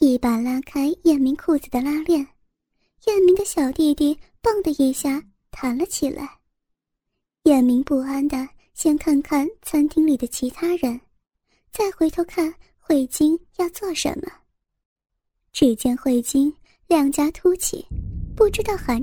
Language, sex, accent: Chinese, male, native